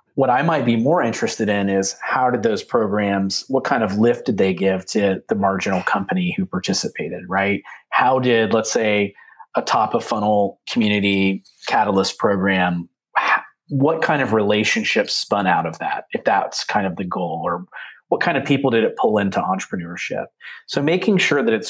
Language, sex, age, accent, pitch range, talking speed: English, male, 30-49, American, 100-140 Hz, 185 wpm